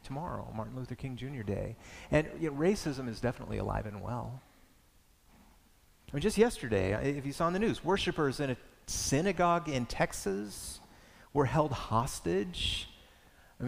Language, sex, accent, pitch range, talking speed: English, male, American, 105-160 Hz, 155 wpm